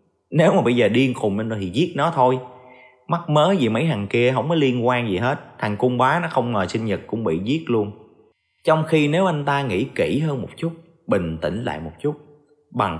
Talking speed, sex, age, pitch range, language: 240 wpm, male, 20-39, 105-155 Hz, Vietnamese